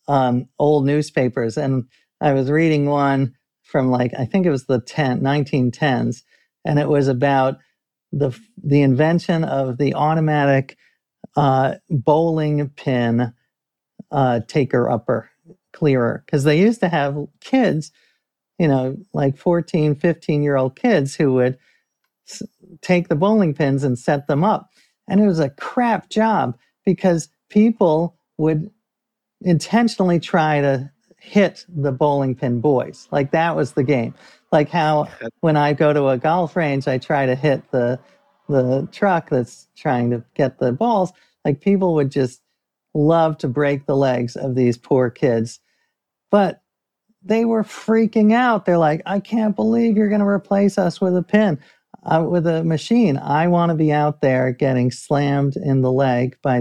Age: 40-59